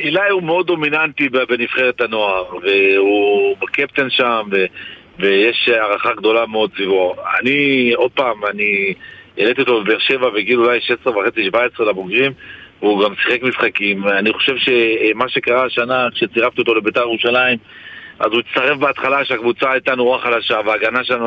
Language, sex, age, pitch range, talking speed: Hebrew, male, 50-69, 115-145 Hz, 145 wpm